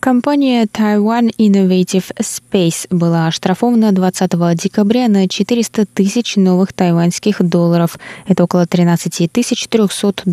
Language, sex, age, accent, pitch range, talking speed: Russian, female, 20-39, native, 165-215 Hz, 105 wpm